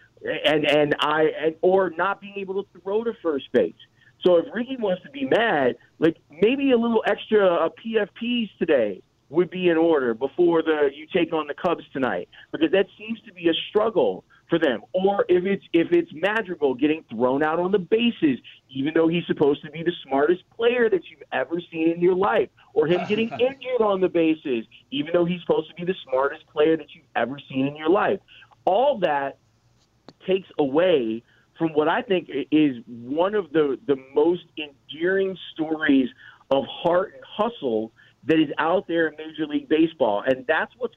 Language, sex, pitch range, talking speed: English, male, 140-195 Hz, 190 wpm